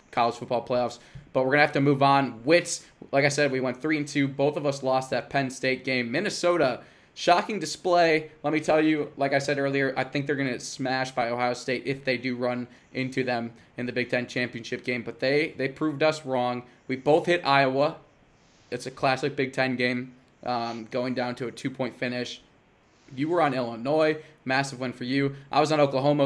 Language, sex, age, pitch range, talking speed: English, male, 20-39, 125-145 Hz, 215 wpm